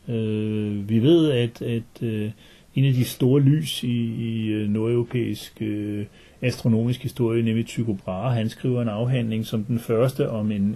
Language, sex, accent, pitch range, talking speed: Danish, male, native, 115-130 Hz, 160 wpm